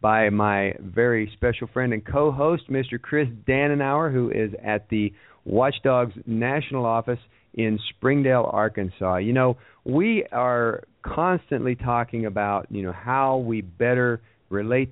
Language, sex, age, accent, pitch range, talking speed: English, male, 50-69, American, 105-135 Hz, 135 wpm